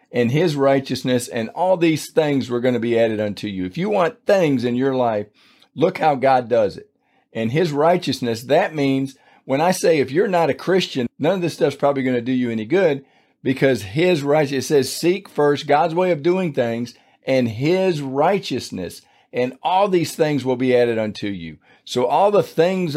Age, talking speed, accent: 50-69, 200 wpm, American